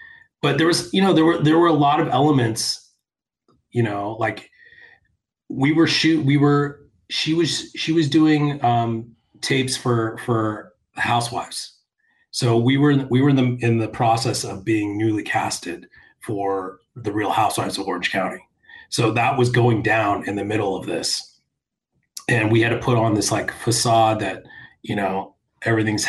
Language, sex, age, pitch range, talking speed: English, male, 30-49, 110-135 Hz, 175 wpm